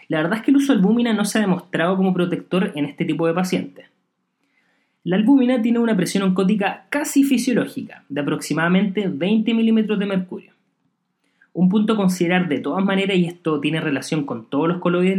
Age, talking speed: 20-39, 190 wpm